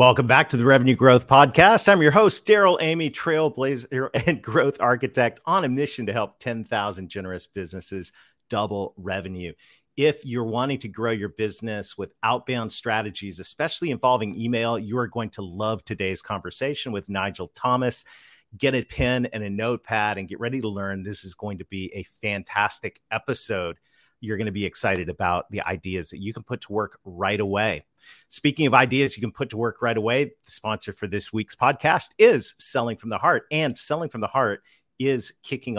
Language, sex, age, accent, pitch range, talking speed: English, male, 40-59, American, 100-125 Hz, 190 wpm